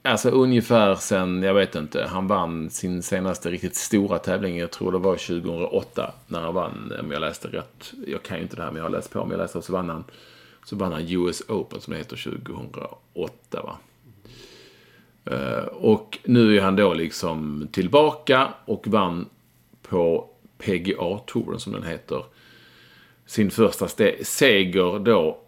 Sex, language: male, English